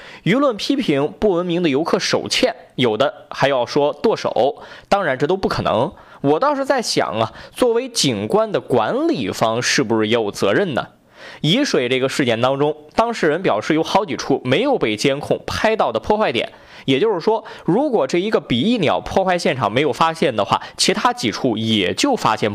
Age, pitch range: 20-39, 150-245 Hz